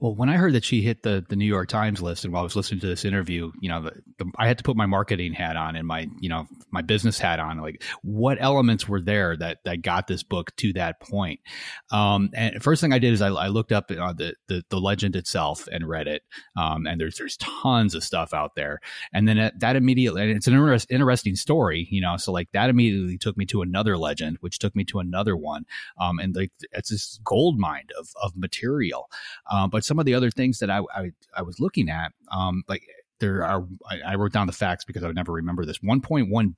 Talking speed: 250 wpm